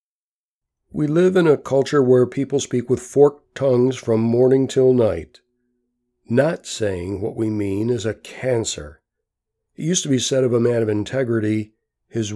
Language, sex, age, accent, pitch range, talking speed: English, male, 60-79, American, 110-135 Hz, 165 wpm